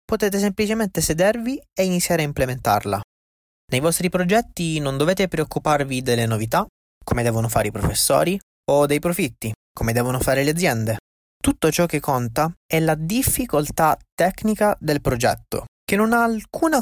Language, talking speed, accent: Italian, 150 wpm, native